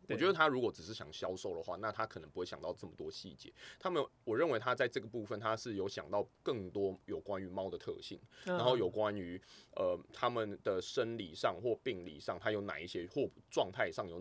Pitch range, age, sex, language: 95-135 Hz, 20-39, male, Chinese